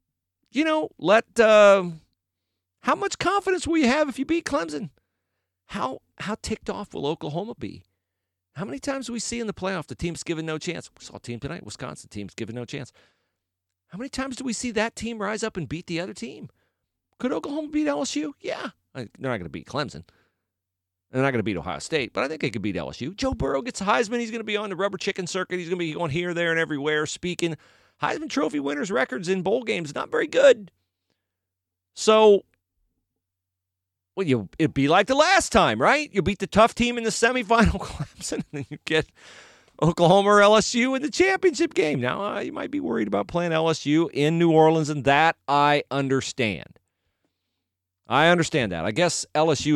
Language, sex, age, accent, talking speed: English, male, 40-59, American, 210 wpm